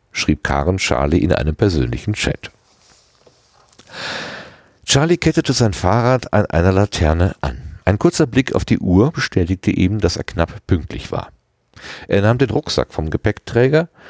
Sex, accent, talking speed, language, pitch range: male, German, 145 wpm, German, 85-120 Hz